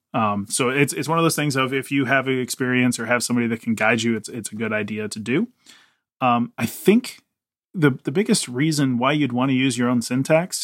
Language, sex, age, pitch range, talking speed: English, male, 30-49, 115-140 Hz, 235 wpm